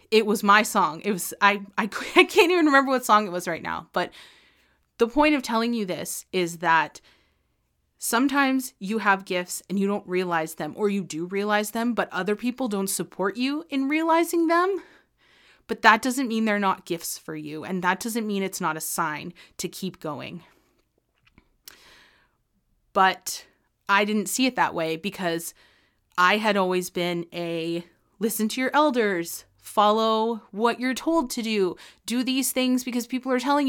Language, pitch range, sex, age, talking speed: English, 175-235 Hz, female, 30-49, 180 wpm